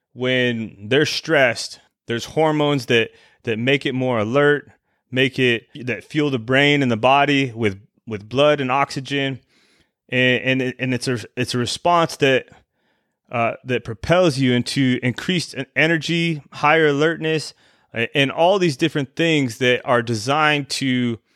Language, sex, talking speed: English, male, 145 wpm